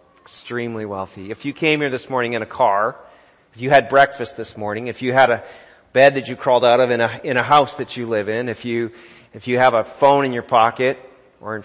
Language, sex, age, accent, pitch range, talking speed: English, male, 40-59, American, 115-145 Hz, 245 wpm